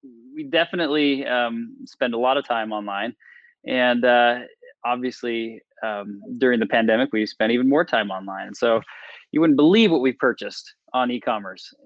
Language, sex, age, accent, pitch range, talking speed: English, male, 20-39, American, 120-145 Hz, 160 wpm